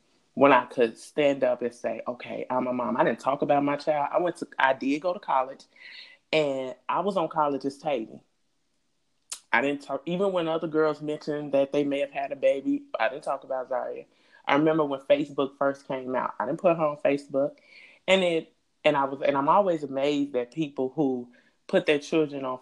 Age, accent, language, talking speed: 20-39, American, English, 215 wpm